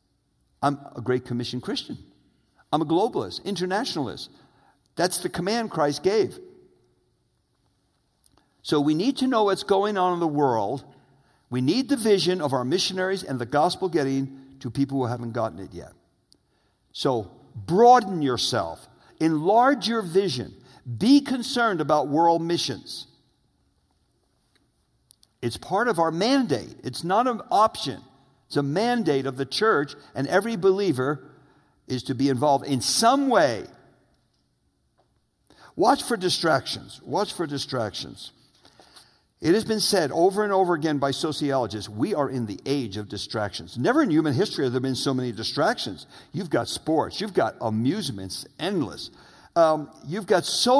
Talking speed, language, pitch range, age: 145 wpm, English, 130-210 Hz, 50-69